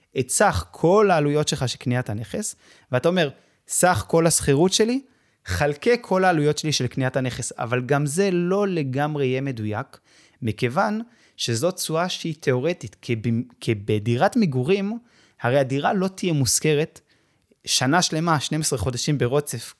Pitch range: 125-170 Hz